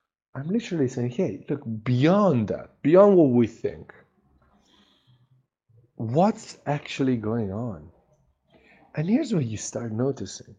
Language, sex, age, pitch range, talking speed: English, male, 50-69, 115-170 Hz, 120 wpm